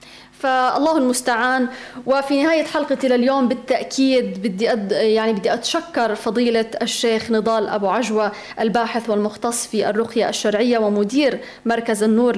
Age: 20-39